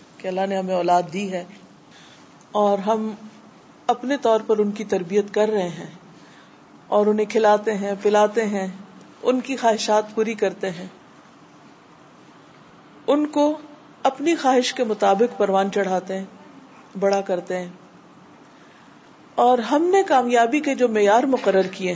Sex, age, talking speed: female, 50-69, 135 wpm